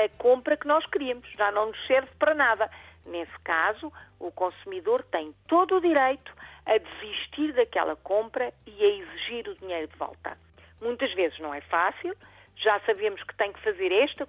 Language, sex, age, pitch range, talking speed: Portuguese, female, 50-69, 185-295 Hz, 175 wpm